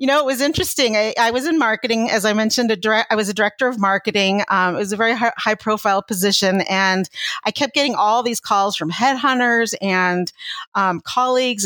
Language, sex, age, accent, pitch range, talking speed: English, female, 40-59, American, 195-235 Hz, 205 wpm